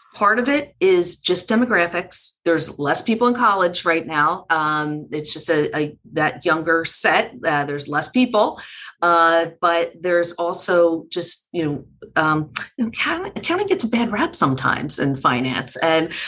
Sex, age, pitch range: female, 40-59, 155-220 Hz